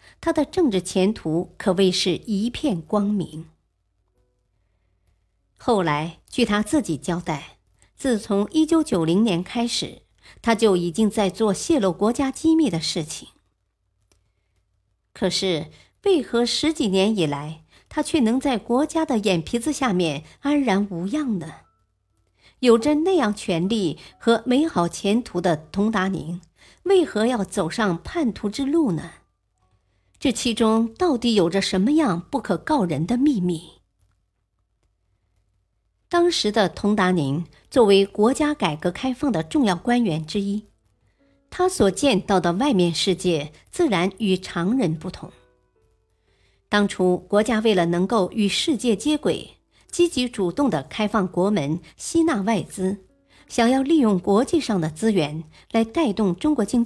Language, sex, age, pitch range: Chinese, male, 50-69, 155-235 Hz